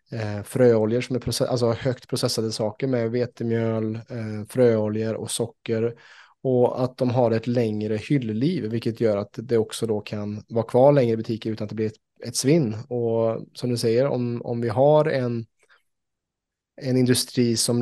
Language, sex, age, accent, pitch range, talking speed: Swedish, male, 20-39, Norwegian, 115-130 Hz, 170 wpm